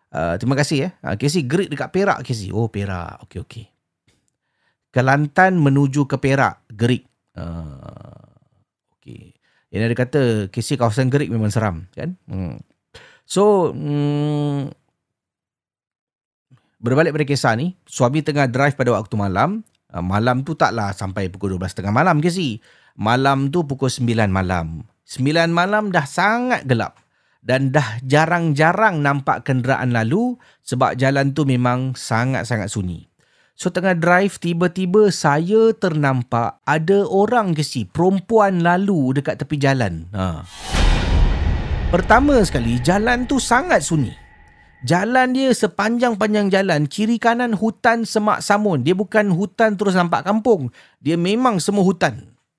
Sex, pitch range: male, 120-185 Hz